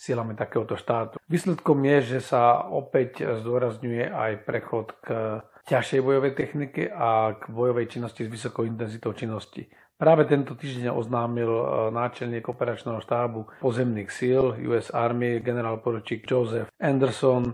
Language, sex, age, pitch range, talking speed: Slovak, male, 40-59, 115-130 Hz, 130 wpm